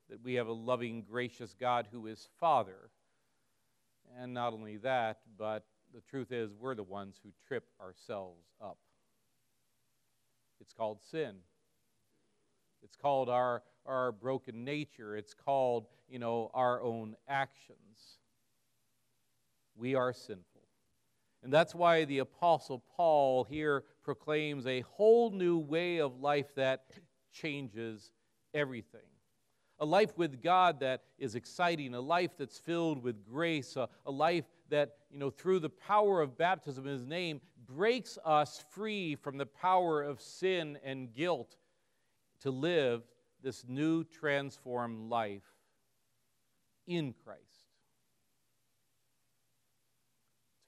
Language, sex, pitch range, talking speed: English, male, 120-150 Hz, 125 wpm